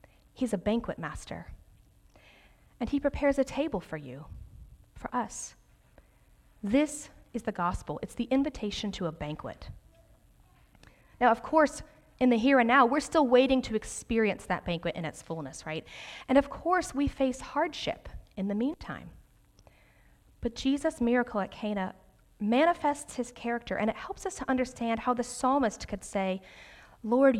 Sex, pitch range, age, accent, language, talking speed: female, 190-265 Hz, 40-59, American, English, 155 wpm